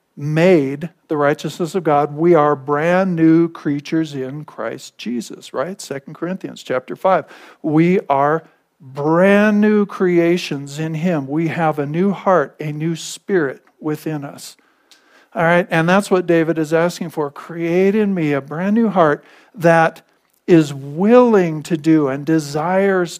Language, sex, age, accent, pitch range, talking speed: English, male, 50-69, American, 155-185 Hz, 150 wpm